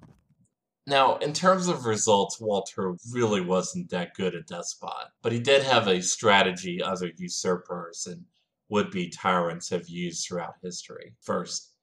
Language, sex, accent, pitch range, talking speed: English, male, American, 90-125 Hz, 140 wpm